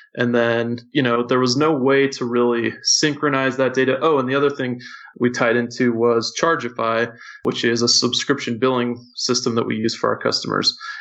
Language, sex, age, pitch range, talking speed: English, male, 20-39, 120-130 Hz, 190 wpm